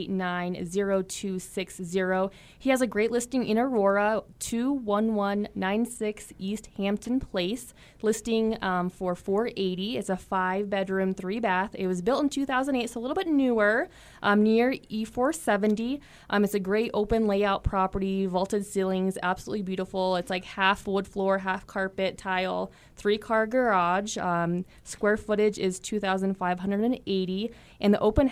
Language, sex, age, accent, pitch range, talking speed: English, female, 20-39, American, 185-220 Hz, 155 wpm